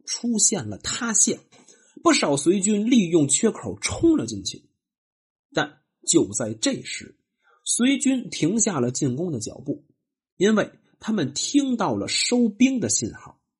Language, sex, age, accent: Chinese, male, 30-49, native